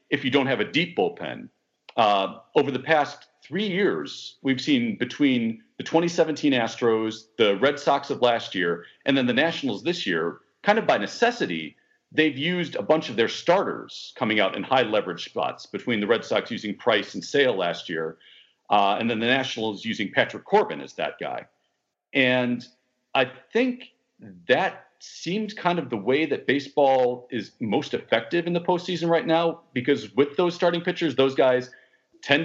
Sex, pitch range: male, 125-170 Hz